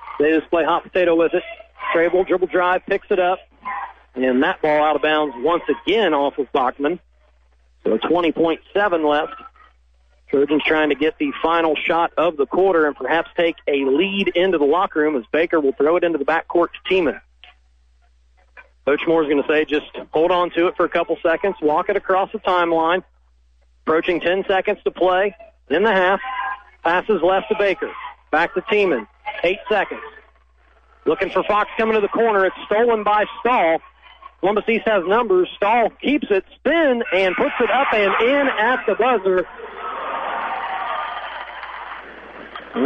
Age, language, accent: 40-59, English, American